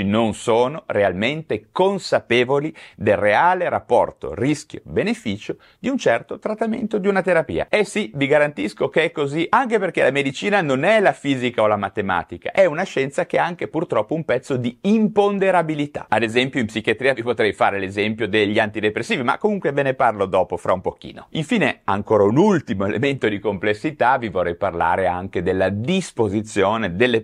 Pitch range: 100-150 Hz